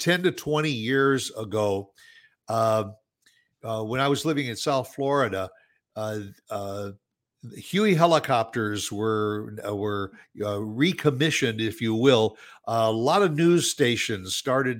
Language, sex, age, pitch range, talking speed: English, male, 60-79, 110-145 Hz, 125 wpm